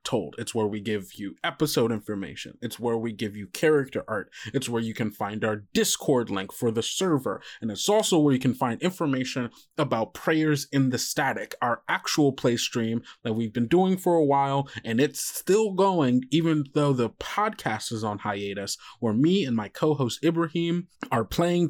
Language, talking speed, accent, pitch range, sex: English, 190 wpm, American, 115-150 Hz, male